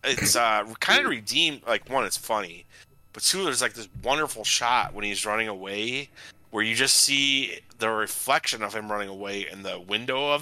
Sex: male